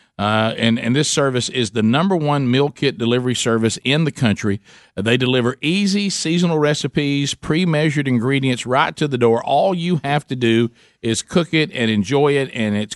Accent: American